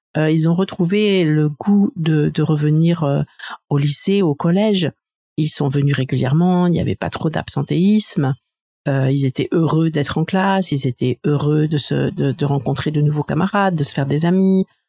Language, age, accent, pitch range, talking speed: French, 50-69, French, 145-180 Hz, 190 wpm